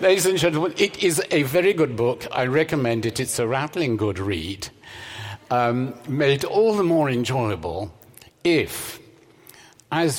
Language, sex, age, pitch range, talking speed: English, male, 60-79, 105-135 Hz, 145 wpm